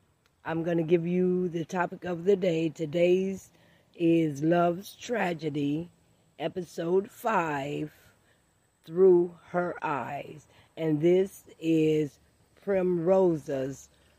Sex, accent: female, American